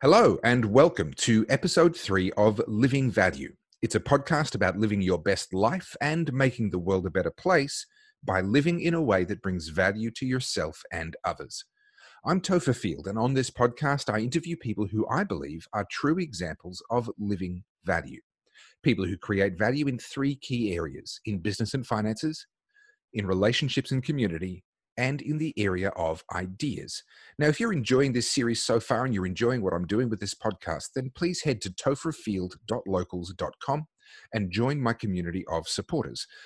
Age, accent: 30-49, Australian